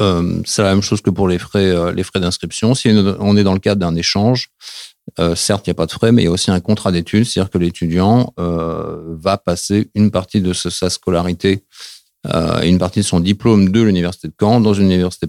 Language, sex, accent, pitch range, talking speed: French, male, French, 85-105 Hz, 230 wpm